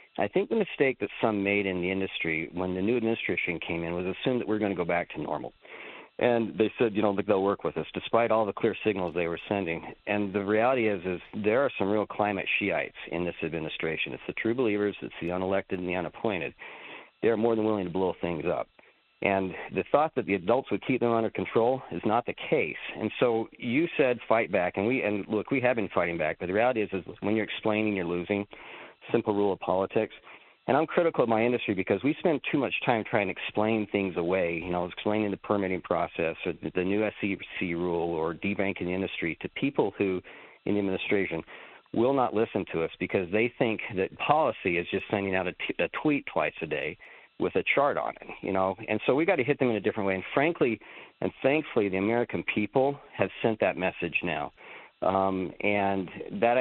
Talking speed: 225 wpm